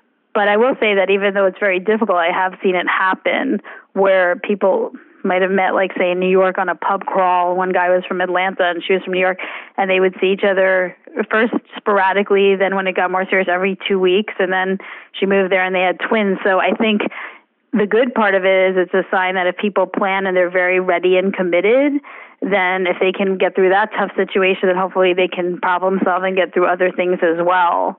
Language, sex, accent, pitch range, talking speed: English, female, American, 180-200 Hz, 235 wpm